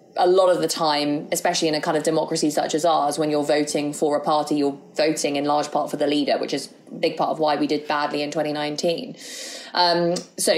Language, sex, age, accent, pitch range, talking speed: English, female, 20-39, British, 155-215 Hz, 240 wpm